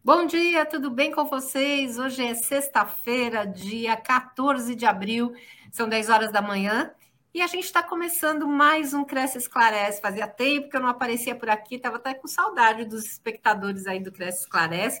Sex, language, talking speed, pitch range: female, Portuguese, 190 wpm, 205-265 Hz